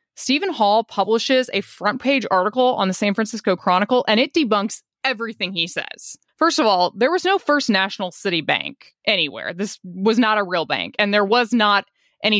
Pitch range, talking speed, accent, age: 185-230 Hz, 195 wpm, American, 20-39